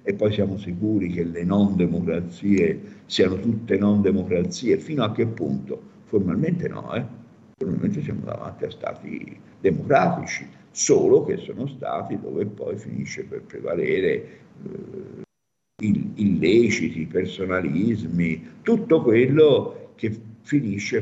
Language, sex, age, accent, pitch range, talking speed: Italian, male, 50-69, native, 95-135 Hz, 110 wpm